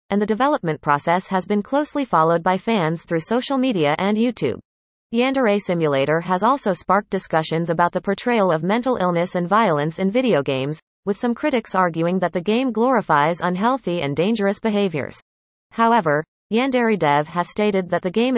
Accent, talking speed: American, 170 wpm